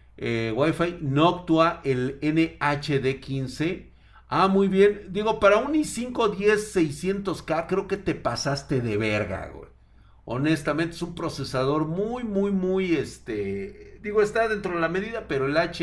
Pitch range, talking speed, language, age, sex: 125-180 Hz, 150 wpm, Spanish, 50-69, male